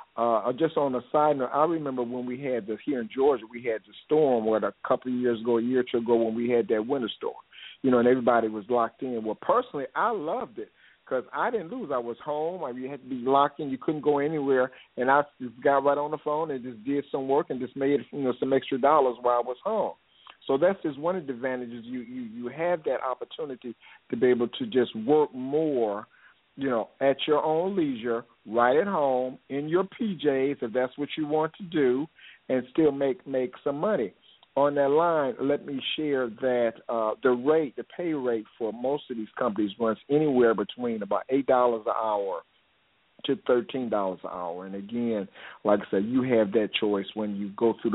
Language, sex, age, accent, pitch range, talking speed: English, male, 50-69, American, 115-140 Hz, 220 wpm